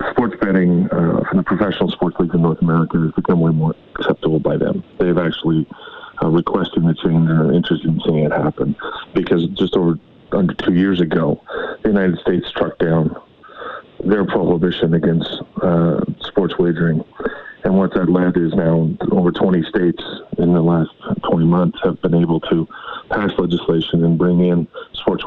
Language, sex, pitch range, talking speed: English, male, 80-90 Hz, 170 wpm